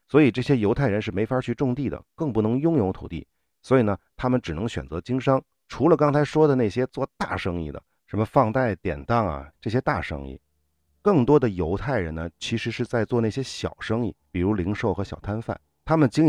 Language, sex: Chinese, male